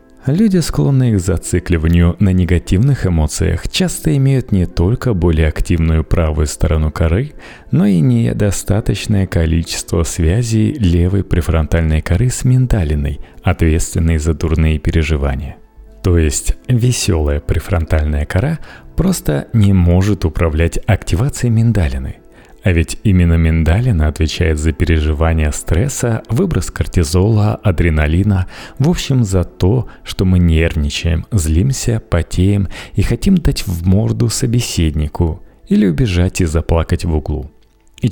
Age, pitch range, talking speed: 30-49, 80-110 Hz, 115 wpm